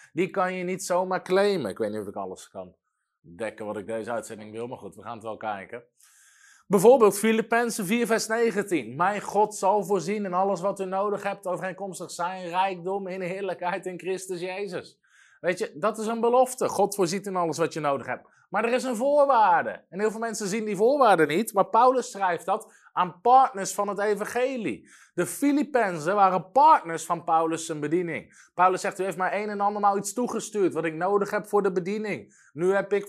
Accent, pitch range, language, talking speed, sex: Dutch, 180-235 Hz, Dutch, 210 wpm, male